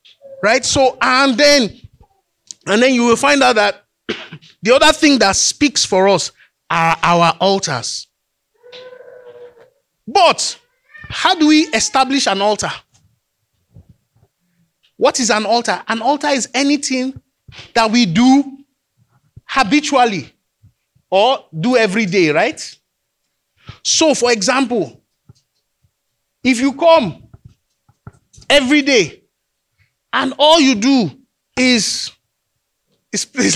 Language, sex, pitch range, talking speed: English, male, 195-280 Hz, 105 wpm